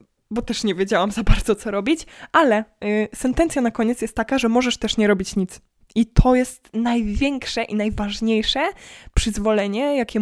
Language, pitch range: Polish, 205-245 Hz